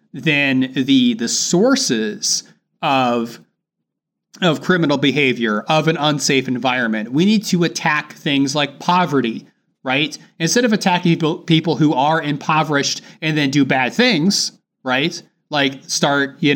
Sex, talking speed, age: male, 135 wpm, 30-49